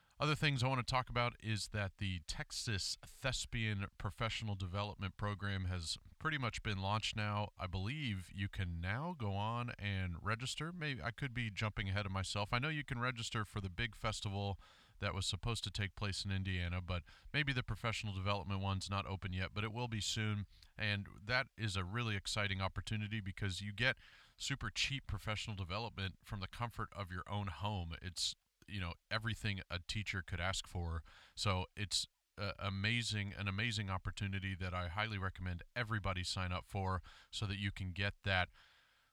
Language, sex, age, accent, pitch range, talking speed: English, male, 40-59, American, 95-110 Hz, 185 wpm